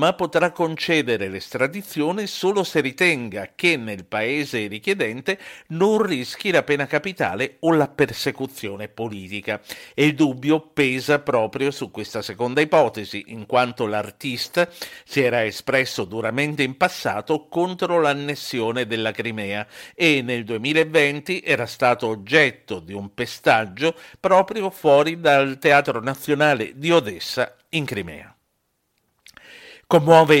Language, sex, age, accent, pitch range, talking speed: Italian, male, 50-69, native, 115-160 Hz, 120 wpm